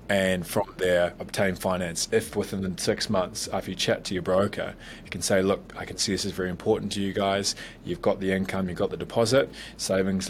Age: 20-39